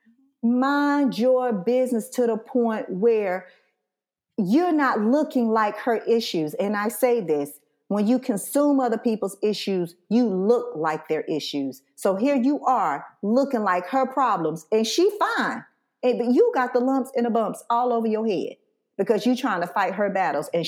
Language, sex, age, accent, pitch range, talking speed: English, female, 40-59, American, 170-235 Hz, 175 wpm